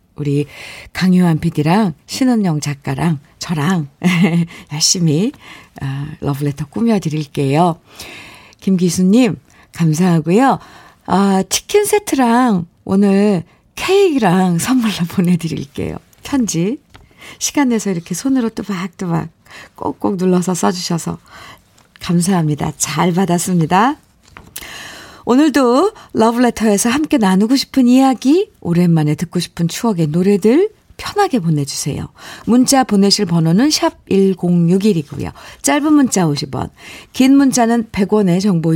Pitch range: 155-230 Hz